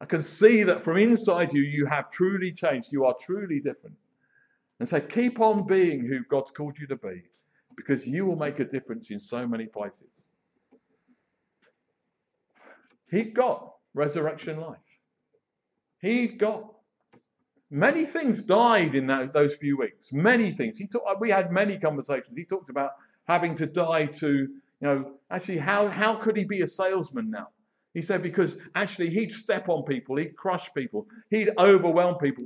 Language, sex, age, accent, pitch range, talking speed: English, male, 50-69, British, 140-215 Hz, 170 wpm